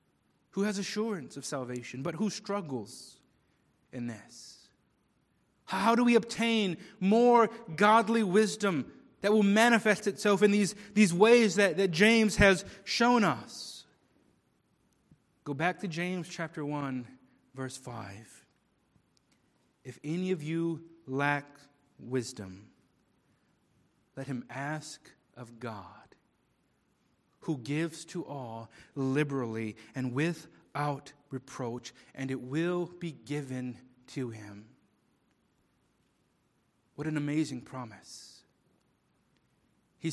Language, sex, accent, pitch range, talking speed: English, male, American, 130-180 Hz, 105 wpm